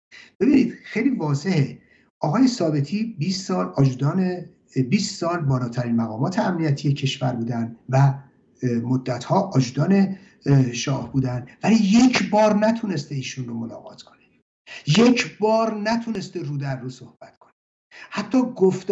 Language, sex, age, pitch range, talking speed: English, male, 60-79, 135-215 Hz, 115 wpm